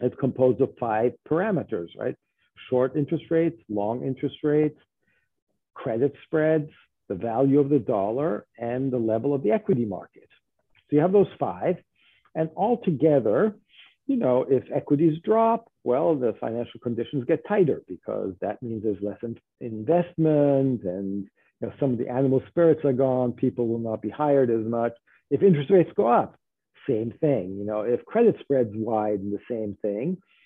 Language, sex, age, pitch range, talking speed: English, male, 50-69, 120-160 Hz, 160 wpm